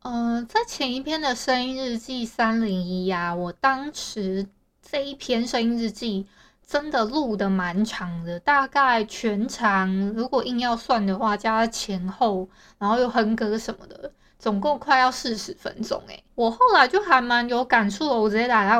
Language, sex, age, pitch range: Chinese, female, 20-39, 215-265 Hz